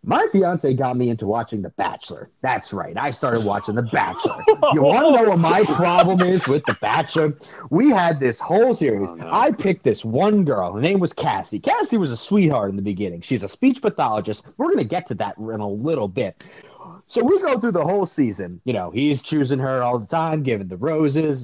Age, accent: 30-49, American